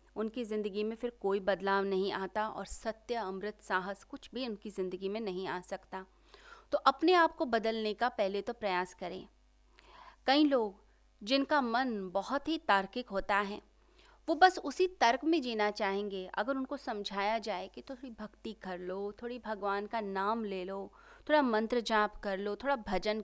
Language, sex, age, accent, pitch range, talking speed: Hindi, female, 30-49, native, 195-245 Hz, 180 wpm